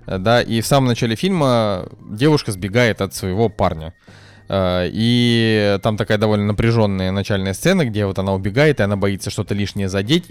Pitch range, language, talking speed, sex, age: 100-125 Hz, Russian, 165 wpm, male, 20-39